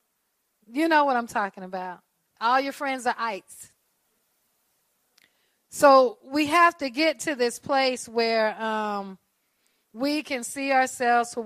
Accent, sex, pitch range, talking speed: American, female, 225-295 Hz, 135 wpm